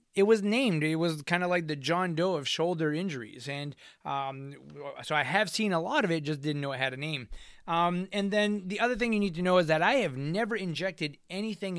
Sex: male